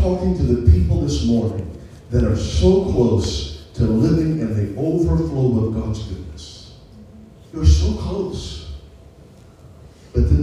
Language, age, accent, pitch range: English, 40-59, American, 85-120 Hz